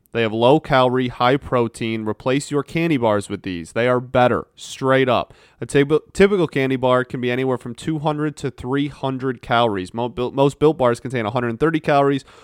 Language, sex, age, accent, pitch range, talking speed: English, male, 30-49, American, 115-135 Hz, 160 wpm